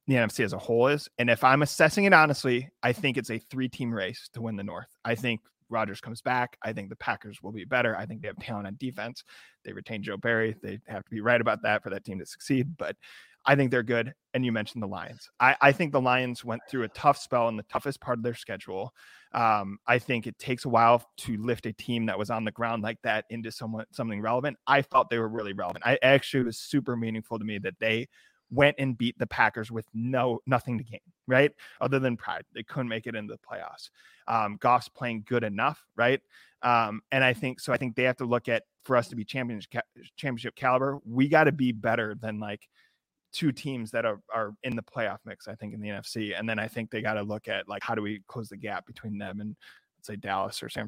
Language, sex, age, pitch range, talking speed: English, male, 30-49, 110-130 Hz, 250 wpm